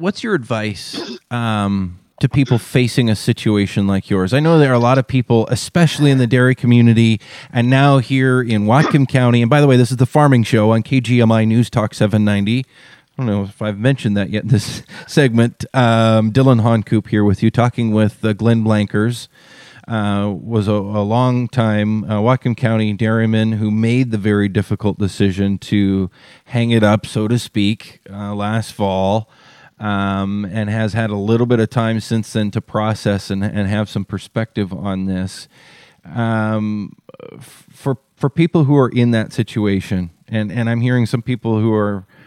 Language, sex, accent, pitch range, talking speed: English, male, American, 105-125 Hz, 180 wpm